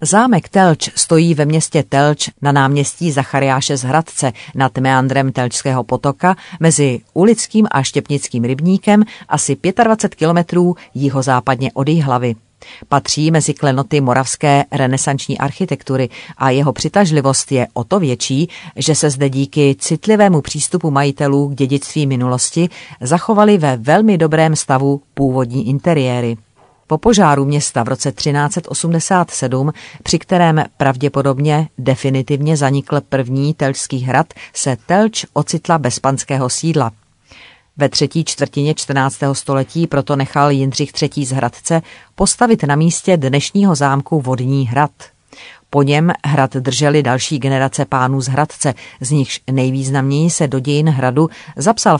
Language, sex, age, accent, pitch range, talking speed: Czech, female, 40-59, native, 135-165 Hz, 130 wpm